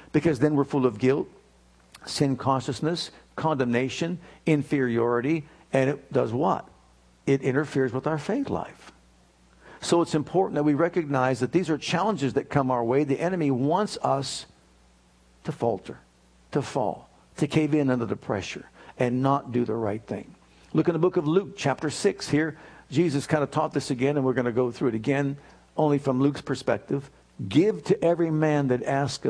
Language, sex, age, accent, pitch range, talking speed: English, male, 60-79, American, 125-160 Hz, 180 wpm